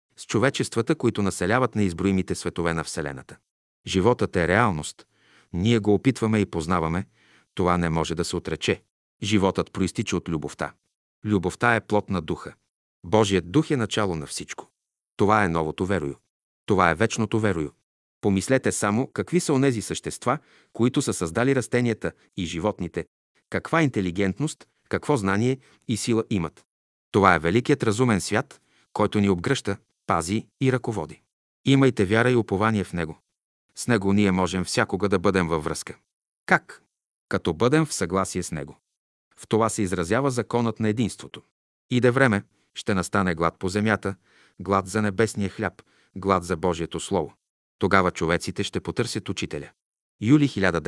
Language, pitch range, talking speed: Bulgarian, 90-115 Hz, 145 wpm